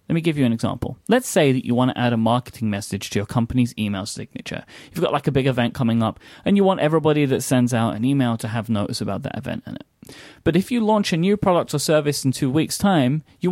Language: English